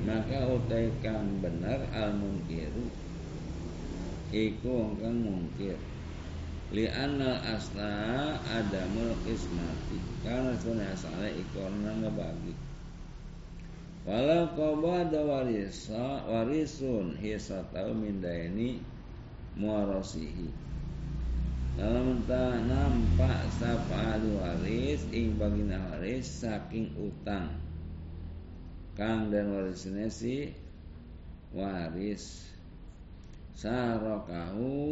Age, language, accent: 50-69, Indonesian, native